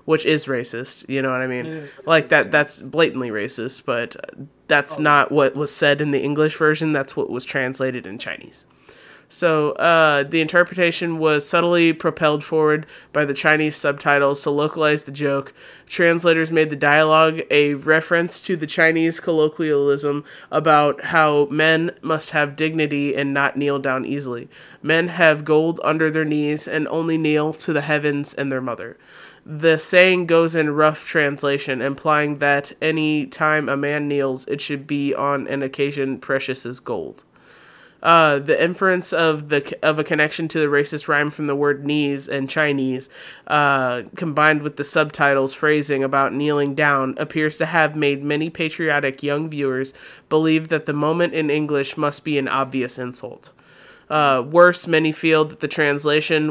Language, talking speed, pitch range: English, 165 wpm, 140-155 Hz